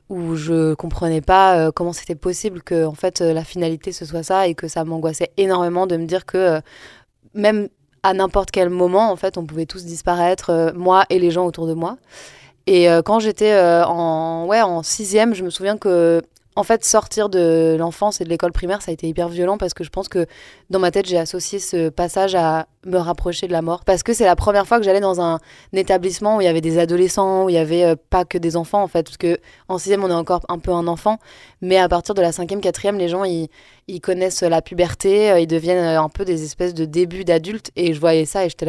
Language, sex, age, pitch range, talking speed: French, female, 20-39, 165-190 Hz, 245 wpm